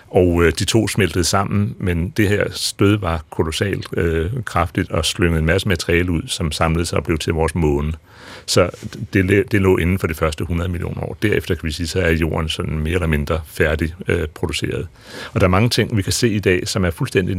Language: Danish